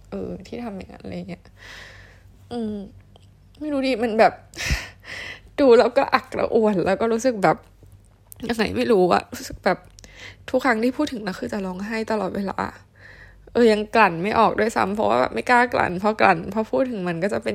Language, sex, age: Thai, female, 10-29